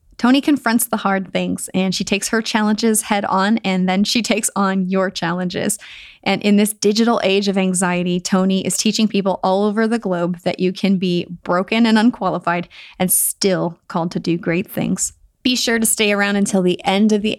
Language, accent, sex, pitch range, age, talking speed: English, American, female, 180-215 Hz, 20-39, 200 wpm